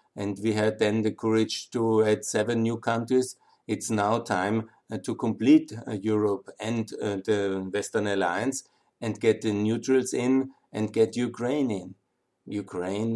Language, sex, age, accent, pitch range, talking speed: German, male, 50-69, German, 105-120 Hz, 145 wpm